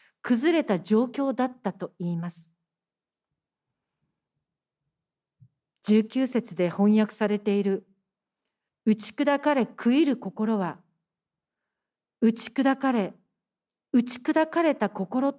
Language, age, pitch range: Japanese, 50-69, 185-245 Hz